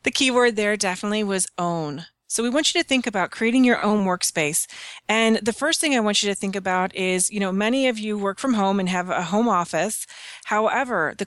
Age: 30-49